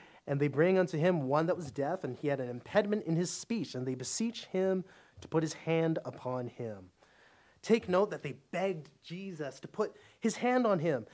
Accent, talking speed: American, 210 wpm